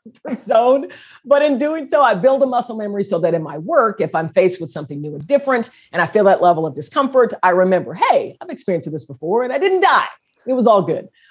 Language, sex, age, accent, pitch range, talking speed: English, female, 40-59, American, 155-200 Hz, 240 wpm